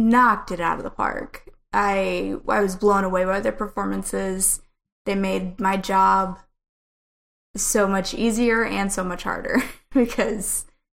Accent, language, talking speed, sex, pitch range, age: American, English, 145 wpm, female, 185-205 Hz, 20-39